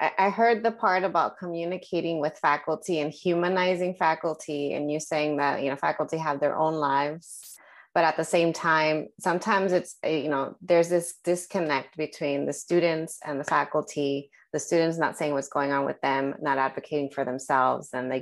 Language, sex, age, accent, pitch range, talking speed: English, female, 20-39, American, 140-175 Hz, 180 wpm